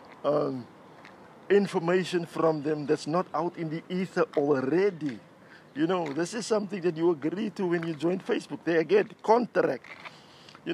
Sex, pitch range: male, 145-180 Hz